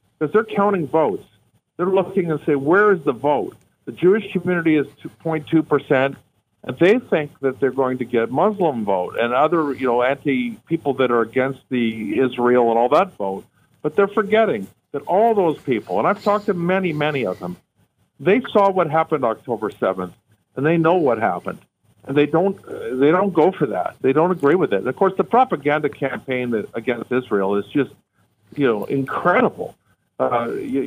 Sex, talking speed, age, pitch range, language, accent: male, 185 wpm, 50-69, 120-170 Hz, English, American